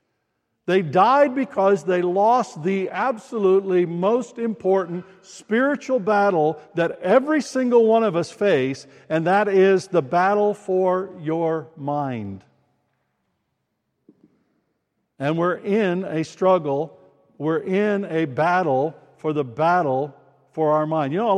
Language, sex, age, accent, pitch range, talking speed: English, male, 60-79, American, 155-210 Hz, 125 wpm